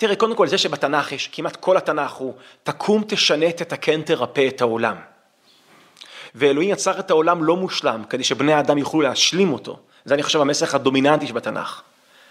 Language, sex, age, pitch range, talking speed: Hebrew, male, 30-49, 130-185 Hz, 165 wpm